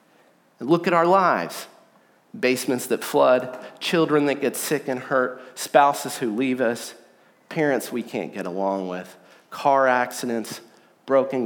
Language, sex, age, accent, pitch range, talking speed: English, male, 40-59, American, 125-205 Hz, 135 wpm